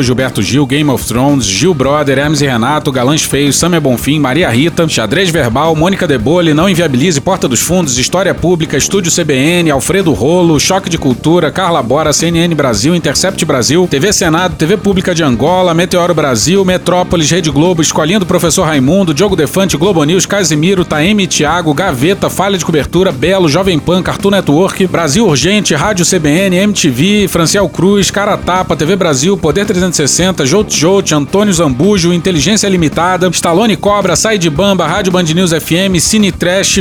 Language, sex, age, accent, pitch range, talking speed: Portuguese, male, 40-59, Brazilian, 155-200 Hz, 165 wpm